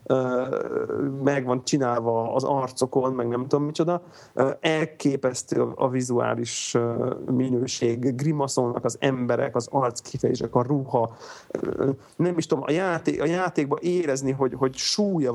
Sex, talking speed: male, 120 wpm